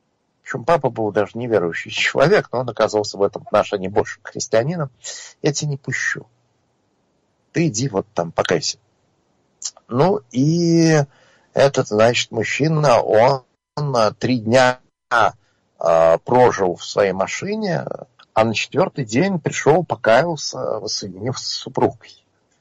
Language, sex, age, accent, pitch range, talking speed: Russian, male, 50-69, native, 105-140 Hz, 115 wpm